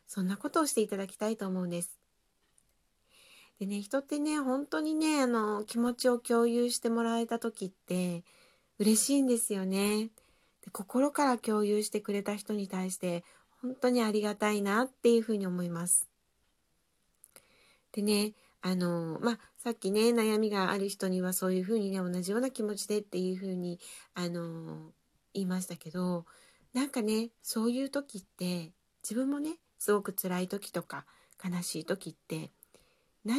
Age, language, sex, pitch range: 40-59, Japanese, female, 190-235 Hz